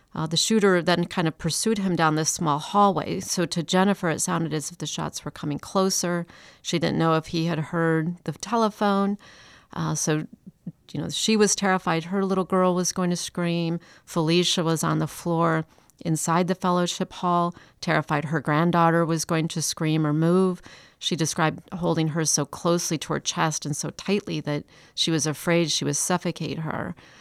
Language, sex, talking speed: English, female, 185 wpm